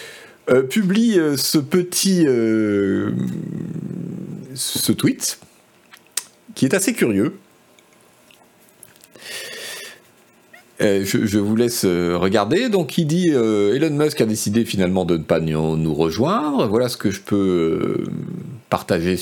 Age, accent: 40-59, French